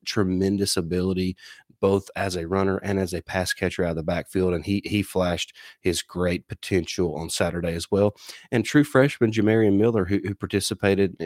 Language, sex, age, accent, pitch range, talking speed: English, male, 30-49, American, 90-105 Hz, 180 wpm